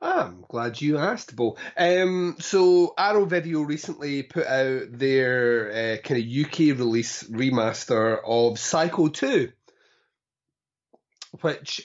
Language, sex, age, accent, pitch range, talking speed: English, male, 30-49, British, 115-165 Hz, 115 wpm